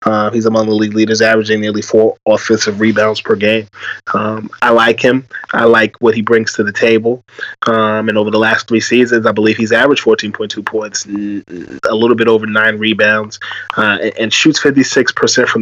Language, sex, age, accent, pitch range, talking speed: English, male, 20-39, American, 110-115 Hz, 190 wpm